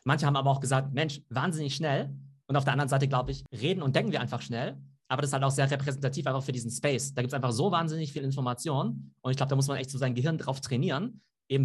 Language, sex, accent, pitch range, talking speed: German, male, German, 125-155 Hz, 275 wpm